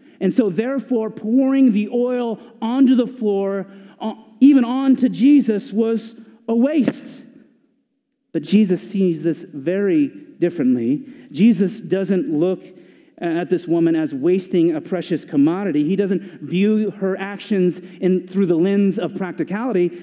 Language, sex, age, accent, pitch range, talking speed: English, male, 40-59, American, 205-275 Hz, 130 wpm